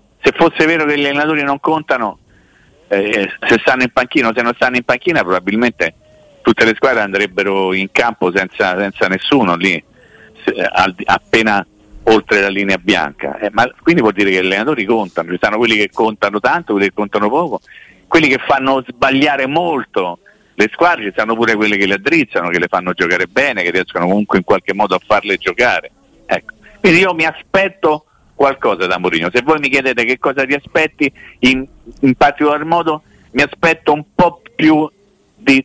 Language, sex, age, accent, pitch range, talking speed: Italian, male, 50-69, native, 105-150 Hz, 180 wpm